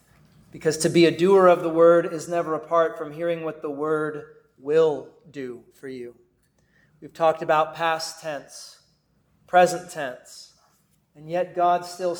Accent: American